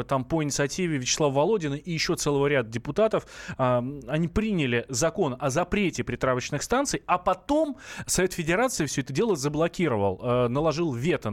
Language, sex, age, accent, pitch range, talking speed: Russian, male, 20-39, native, 125-180 Hz, 155 wpm